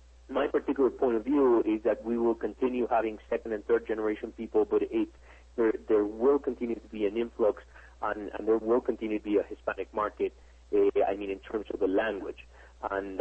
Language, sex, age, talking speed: English, male, 40-59, 205 wpm